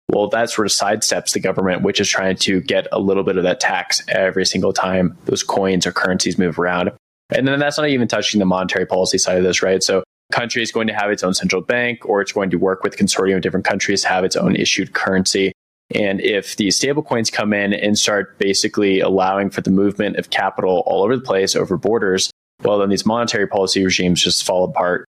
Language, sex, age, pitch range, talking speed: English, male, 20-39, 95-105 Hz, 230 wpm